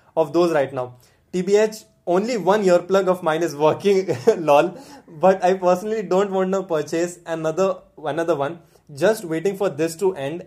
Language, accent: English, Indian